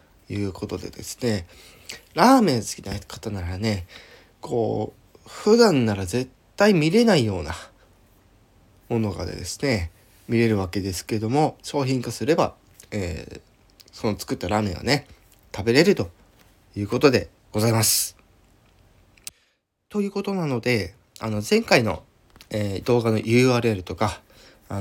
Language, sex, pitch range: Japanese, male, 100-140 Hz